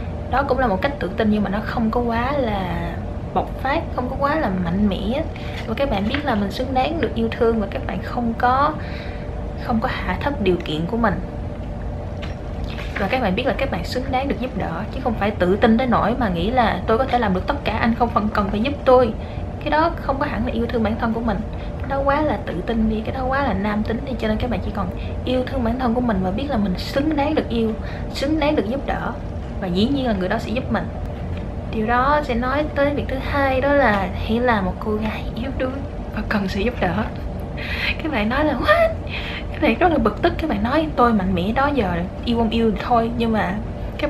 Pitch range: 205-255 Hz